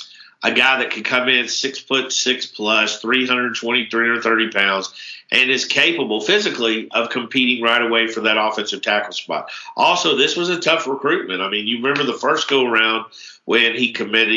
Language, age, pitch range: English, 50-69, 110-130 Hz